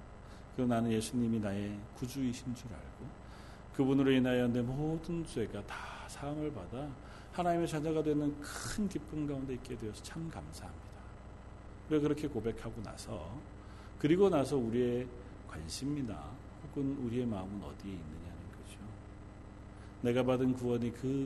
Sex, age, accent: male, 40-59, native